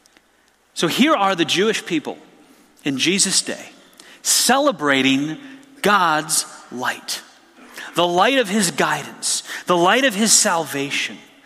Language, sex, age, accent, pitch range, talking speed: English, male, 30-49, American, 170-230 Hz, 115 wpm